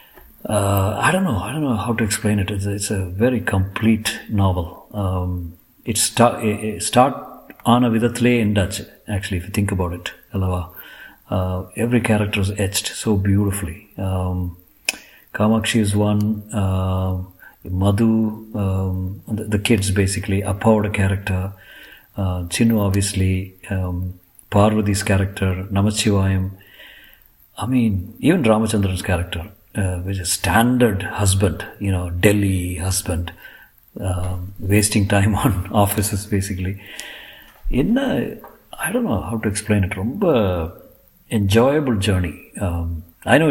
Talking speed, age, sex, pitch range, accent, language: 140 wpm, 50-69, male, 95-110 Hz, native, Tamil